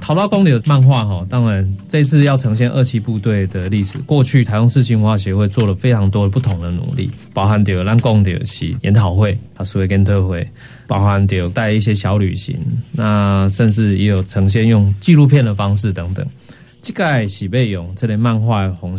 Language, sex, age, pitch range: Chinese, male, 20-39, 100-125 Hz